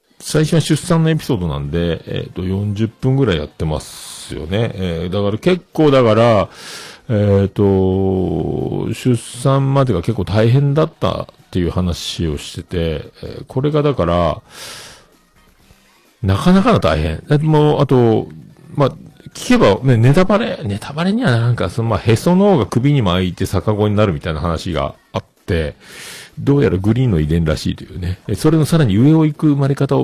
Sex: male